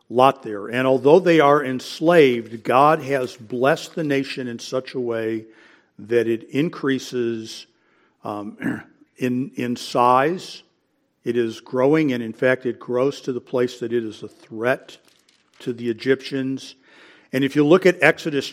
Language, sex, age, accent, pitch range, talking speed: English, male, 50-69, American, 120-145 Hz, 155 wpm